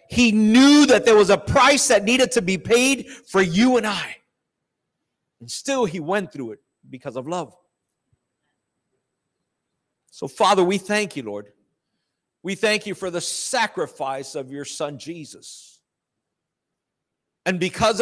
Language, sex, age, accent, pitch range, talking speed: English, male, 50-69, American, 145-210 Hz, 145 wpm